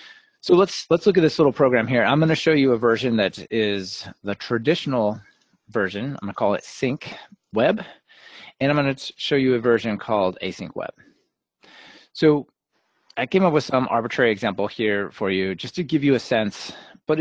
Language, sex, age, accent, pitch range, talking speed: English, male, 30-49, American, 110-140 Hz, 200 wpm